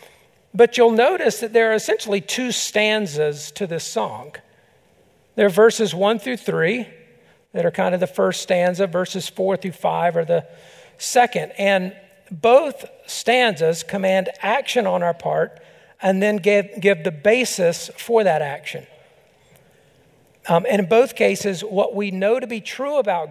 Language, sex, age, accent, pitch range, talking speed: English, male, 50-69, American, 180-225 Hz, 155 wpm